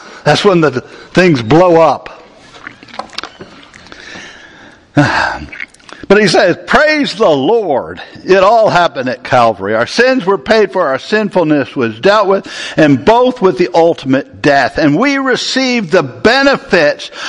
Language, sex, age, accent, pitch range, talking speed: English, male, 60-79, American, 195-275 Hz, 130 wpm